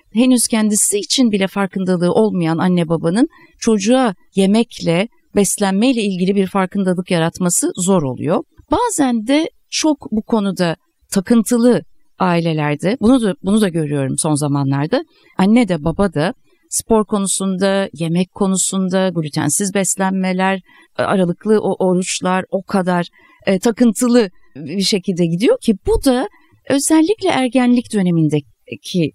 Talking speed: 115 wpm